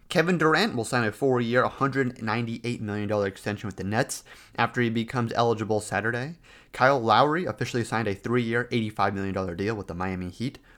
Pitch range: 110-135 Hz